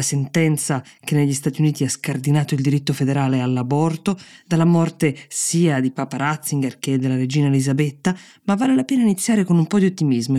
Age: 20-39